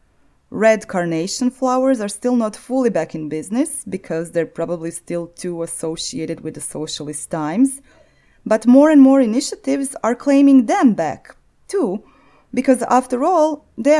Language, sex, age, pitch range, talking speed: English, female, 20-39, 165-250 Hz, 145 wpm